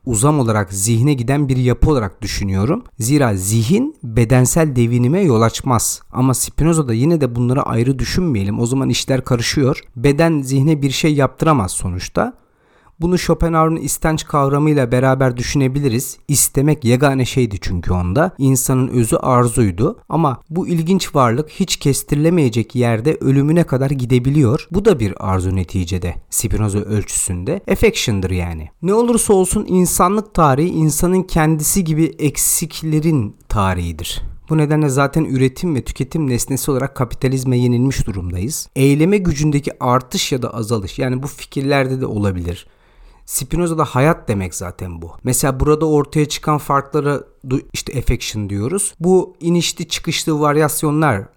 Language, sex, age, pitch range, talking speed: Turkish, male, 40-59, 115-155 Hz, 130 wpm